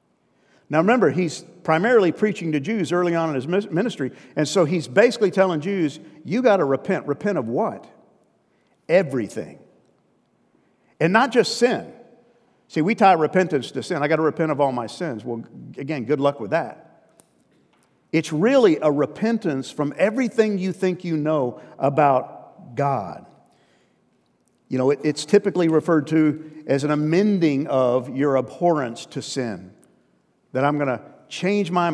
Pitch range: 135-175 Hz